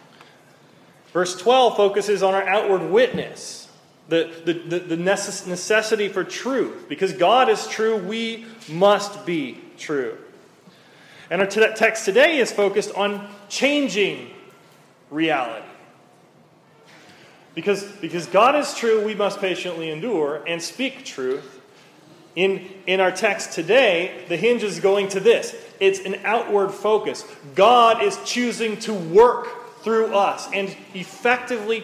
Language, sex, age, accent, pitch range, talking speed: English, male, 30-49, American, 180-240 Hz, 125 wpm